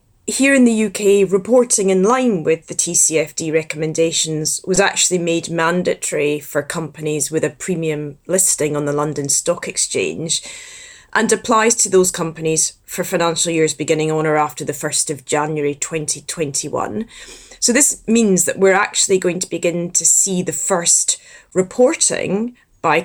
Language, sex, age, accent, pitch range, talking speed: English, female, 20-39, British, 155-190 Hz, 150 wpm